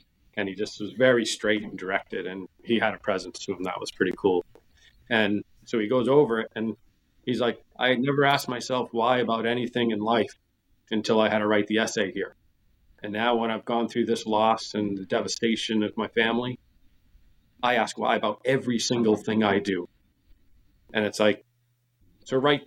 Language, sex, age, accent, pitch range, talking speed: English, male, 40-59, American, 105-120 Hz, 195 wpm